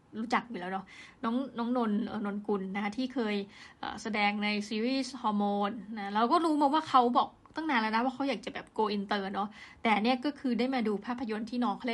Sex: female